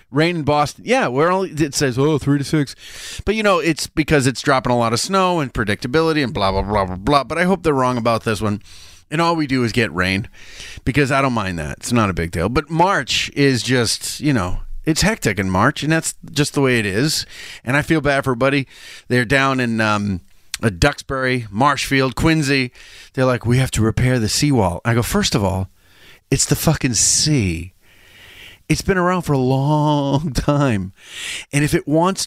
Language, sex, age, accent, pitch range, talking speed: English, male, 30-49, American, 115-165 Hz, 210 wpm